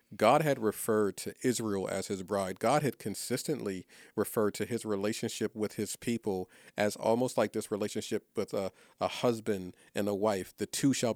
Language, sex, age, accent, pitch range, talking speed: English, male, 40-59, American, 100-115 Hz, 175 wpm